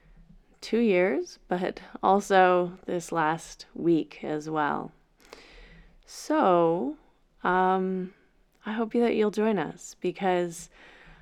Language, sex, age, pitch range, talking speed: English, female, 20-39, 160-210 Hz, 95 wpm